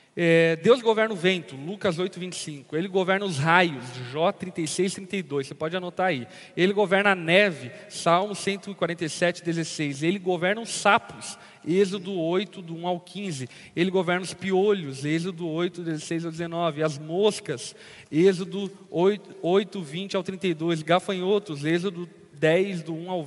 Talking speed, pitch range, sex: 145 wpm, 165-190 Hz, male